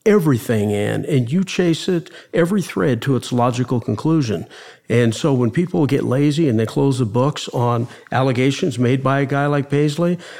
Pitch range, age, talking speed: 120-150 Hz, 50-69, 180 wpm